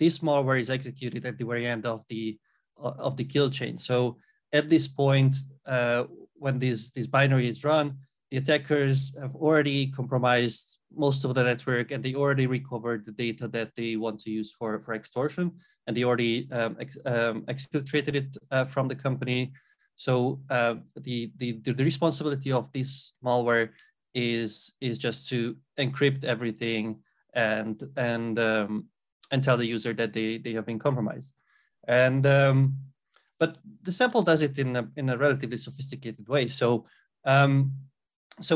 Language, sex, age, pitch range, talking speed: English, male, 20-39, 120-145 Hz, 165 wpm